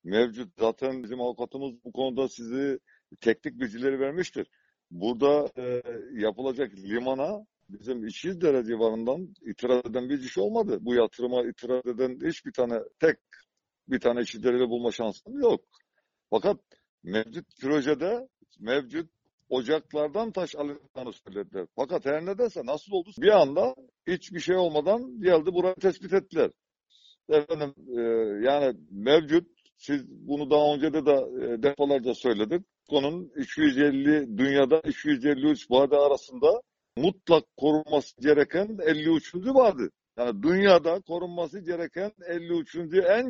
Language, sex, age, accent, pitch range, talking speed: Turkish, male, 60-79, native, 130-185 Hz, 120 wpm